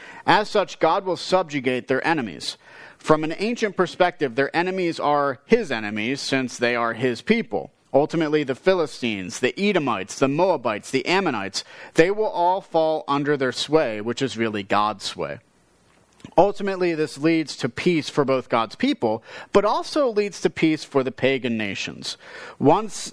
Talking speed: 160 wpm